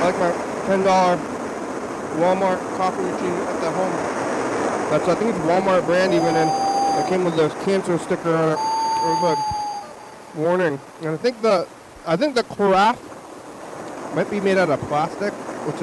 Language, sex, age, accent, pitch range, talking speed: English, male, 30-49, American, 155-185 Hz, 175 wpm